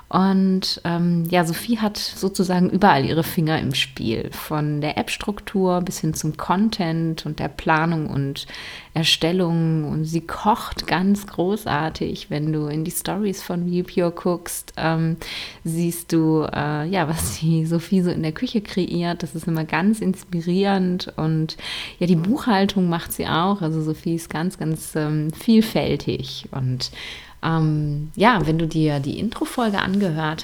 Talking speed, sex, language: 155 wpm, female, German